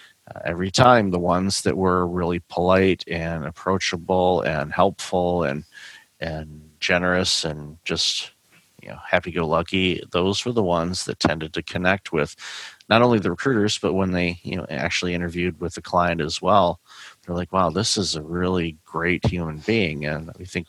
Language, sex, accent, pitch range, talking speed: English, male, American, 80-95 Hz, 170 wpm